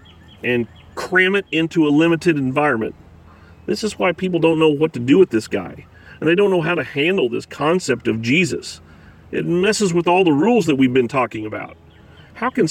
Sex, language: male, English